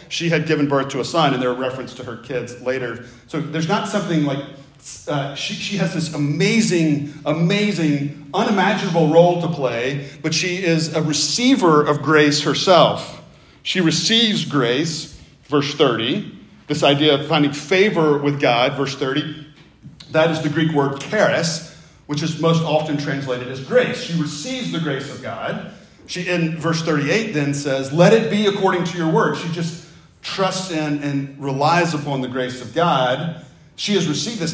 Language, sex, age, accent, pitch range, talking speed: English, male, 40-59, American, 145-180 Hz, 170 wpm